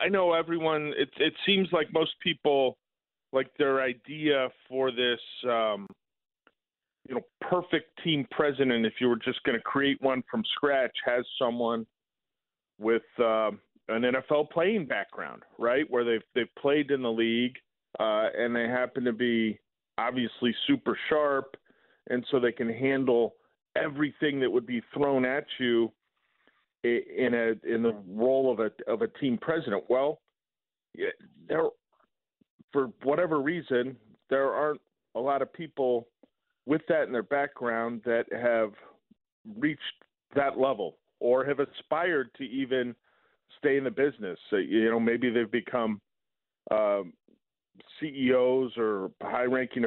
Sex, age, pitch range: male, 40-59, 120-145 Hz